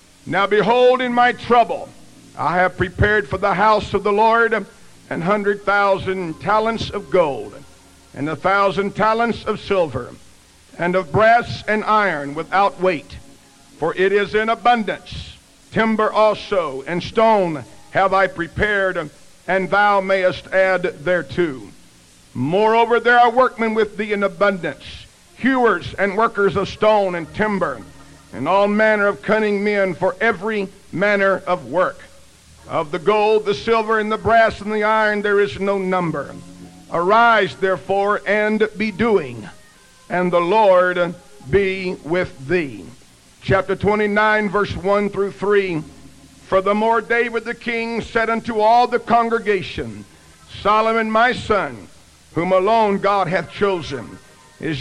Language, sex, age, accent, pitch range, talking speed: English, male, 60-79, American, 180-215 Hz, 140 wpm